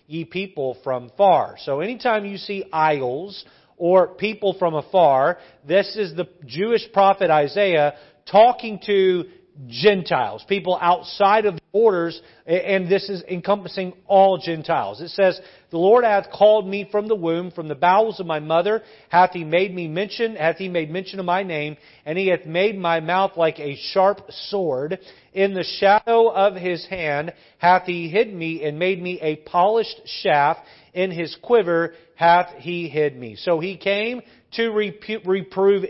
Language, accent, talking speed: English, American, 165 wpm